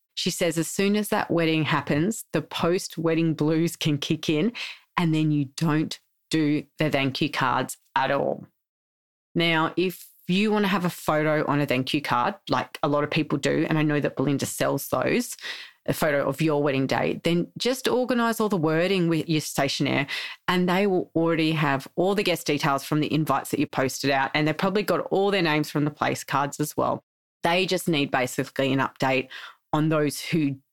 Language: English